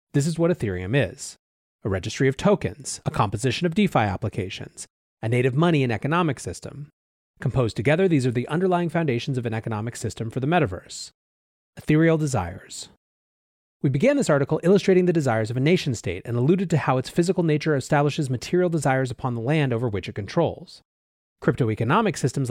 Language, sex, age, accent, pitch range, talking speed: English, male, 30-49, American, 115-155 Hz, 180 wpm